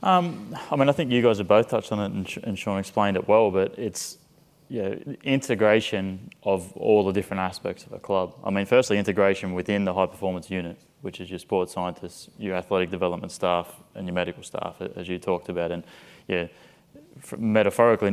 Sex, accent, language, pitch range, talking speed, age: male, Australian, English, 90-105 Hz, 200 wpm, 20-39